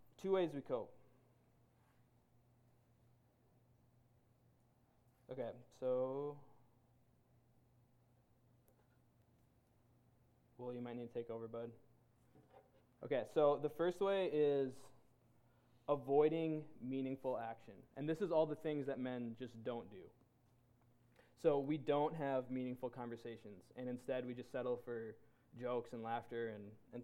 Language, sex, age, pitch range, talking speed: English, male, 20-39, 120-130 Hz, 115 wpm